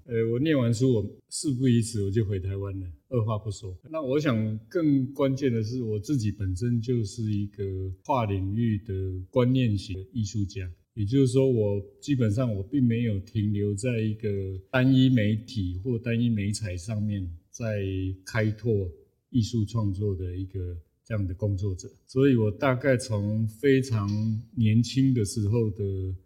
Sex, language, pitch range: male, Chinese, 100-125 Hz